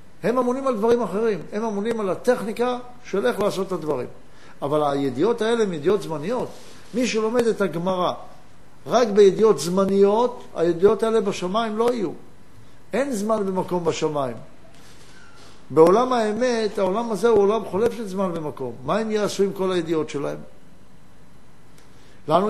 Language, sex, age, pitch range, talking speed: Hebrew, male, 60-79, 170-225 Hz, 145 wpm